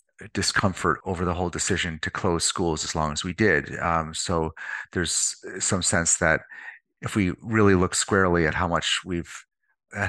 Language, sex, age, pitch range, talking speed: English, male, 40-59, 80-95 Hz, 170 wpm